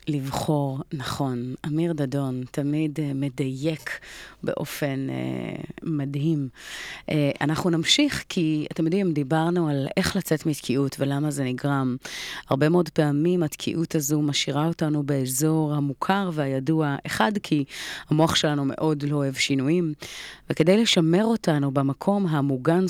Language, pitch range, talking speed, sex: Hebrew, 140-175 Hz, 125 wpm, female